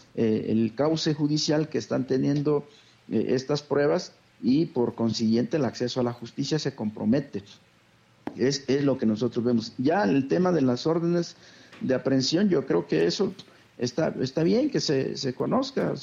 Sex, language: male, Spanish